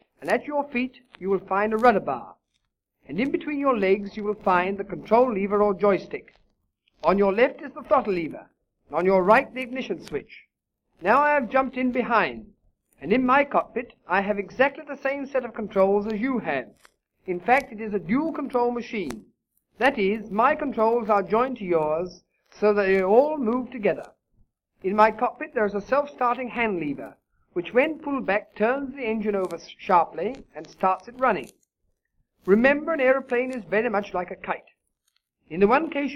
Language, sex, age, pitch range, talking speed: English, male, 50-69, 200-255 Hz, 190 wpm